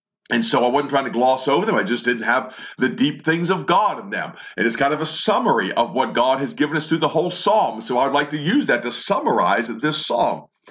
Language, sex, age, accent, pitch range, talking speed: English, male, 50-69, American, 155-225 Hz, 270 wpm